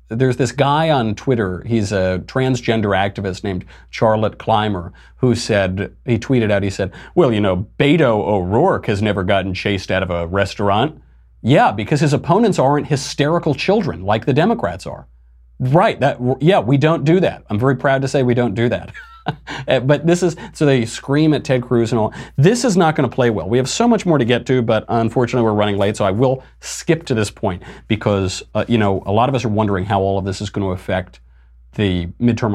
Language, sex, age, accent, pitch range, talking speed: English, male, 40-59, American, 95-130 Hz, 215 wpm